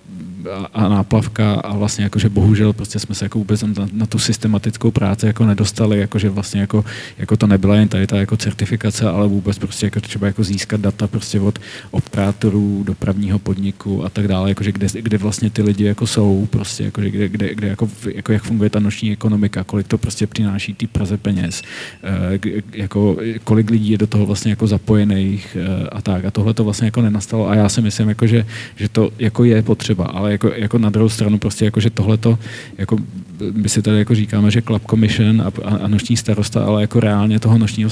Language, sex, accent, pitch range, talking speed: English, male, Czech, 105-110 Hz, 205 wpm